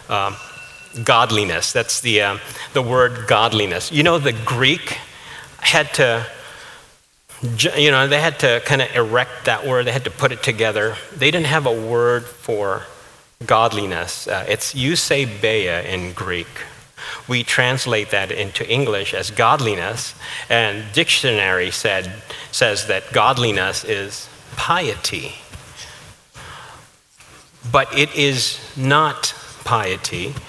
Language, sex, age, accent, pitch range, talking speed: English, male, 40-59, American, 110-145 Hz, 120 wpm